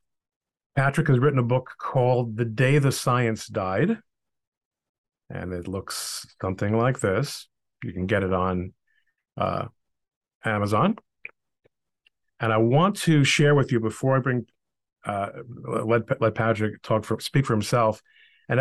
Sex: male